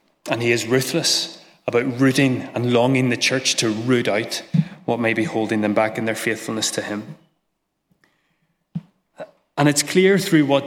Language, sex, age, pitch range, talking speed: English, male, 30-49, 120-160 Hz, 165 wpm